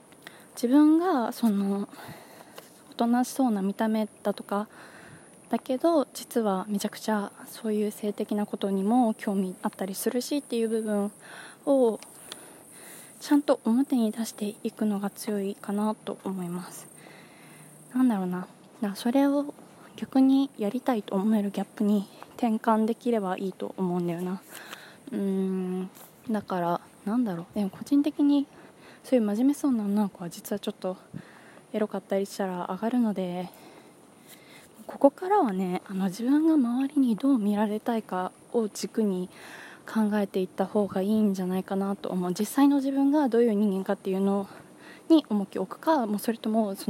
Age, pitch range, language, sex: 20-39, 195-245 Hz, Japanese, female